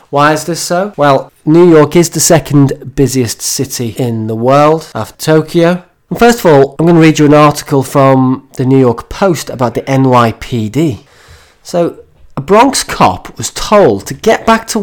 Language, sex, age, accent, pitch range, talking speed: English, male, 30-49, British, 125-170 Hz, 185 wpm